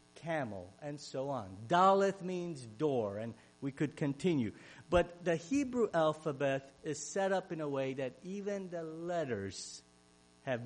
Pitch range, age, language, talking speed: 125-180 Hz, 50-69, English, 145 wpm